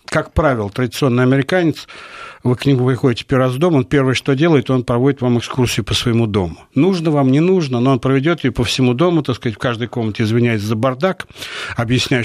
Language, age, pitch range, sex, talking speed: Russian, 60-79, 115-145 Hz, male, 205 wpm